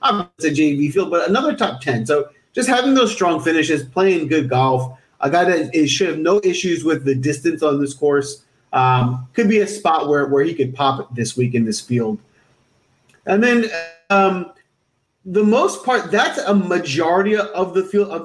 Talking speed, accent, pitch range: 195 wpm, American, 140-190 Hz